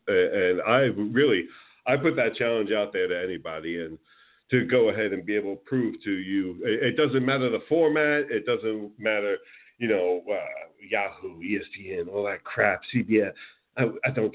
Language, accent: English, American